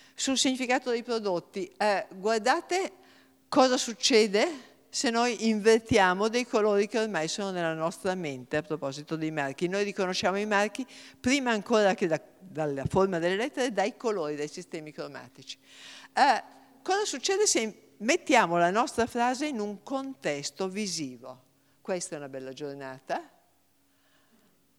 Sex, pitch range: female, 160-230 Hz